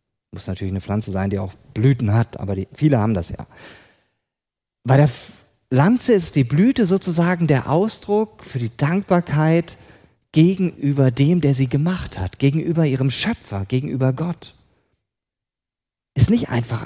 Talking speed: 140 wpm